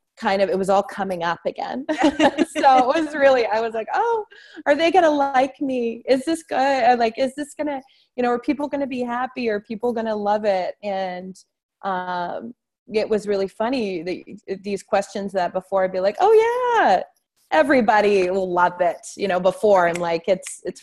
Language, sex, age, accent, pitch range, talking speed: English, female, 20-39, American, 165-225 Hz, 205 wpm